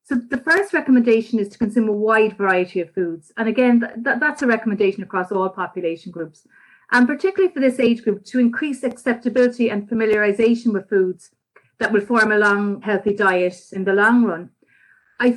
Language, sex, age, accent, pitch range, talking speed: English, female, 30-49, Irish, 195-240 Hz, 180 wpm